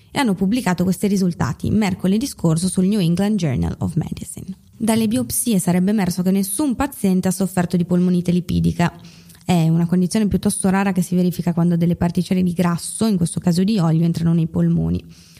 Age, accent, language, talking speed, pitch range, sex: 20-39, native, Italian, 180 wpm, 165-195 Hz, female